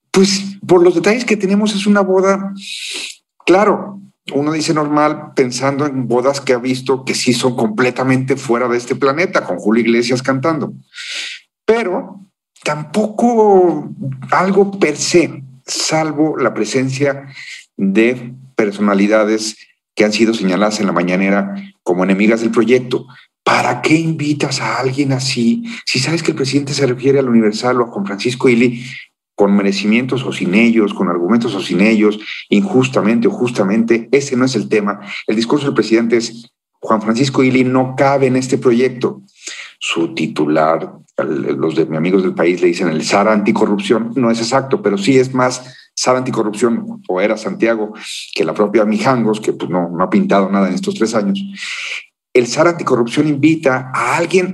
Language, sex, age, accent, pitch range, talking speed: Spanish, male, 50-69, Mexican, 115-155 Hz, 165 wpm